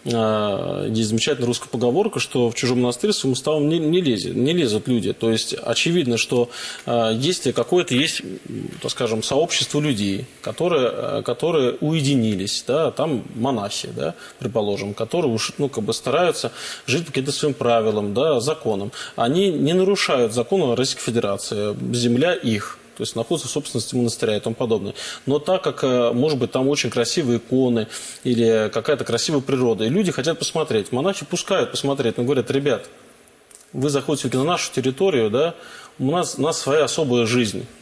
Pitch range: 120-155 Hz